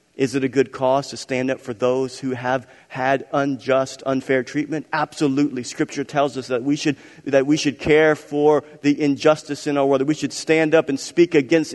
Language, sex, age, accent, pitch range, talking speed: English, male, 40-59, American, 130-160 Hz, 210 wpm